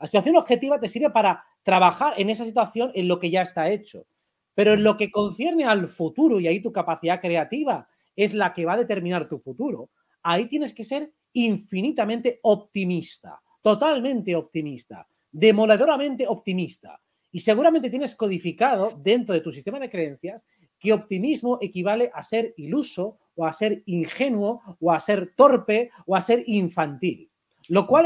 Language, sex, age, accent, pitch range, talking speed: Spanish, male, 30-49, Spanish, 175-235 Hz, 165 wpm